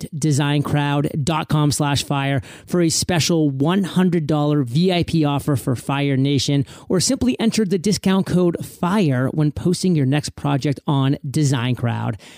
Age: 30-49